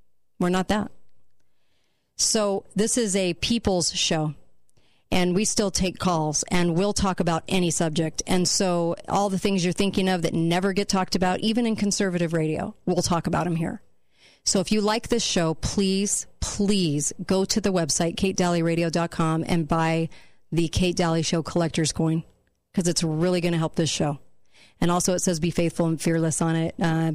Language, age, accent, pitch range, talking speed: English, 40-59, American, 165-190 Hz, 180 wpm